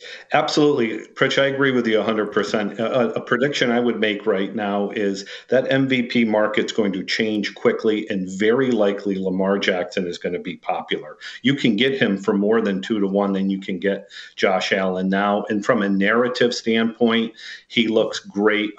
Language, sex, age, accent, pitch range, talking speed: English, male, 50-69, American, 100-120 Hz, 190 wpm